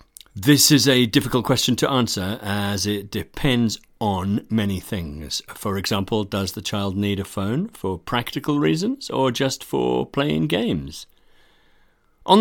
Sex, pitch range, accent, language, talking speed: male, 90-125 Hz, British, English, 145 wpm